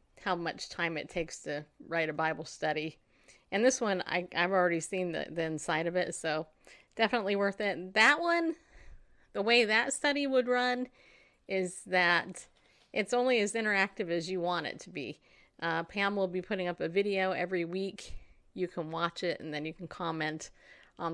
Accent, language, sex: American, English, female